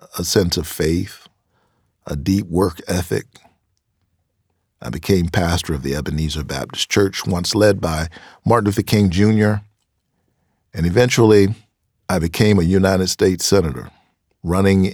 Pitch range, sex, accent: 80-95 Hz, male, American